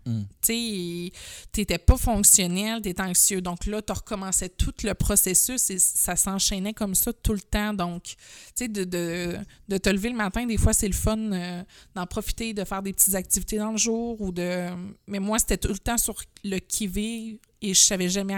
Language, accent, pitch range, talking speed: French, Canadian, 180-210 Hz, 200 wpm